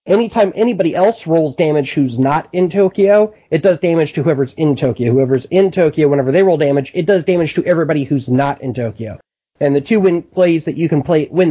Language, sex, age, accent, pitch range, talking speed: English, male, 30-49, American, 140-185 Hz, 220 wpm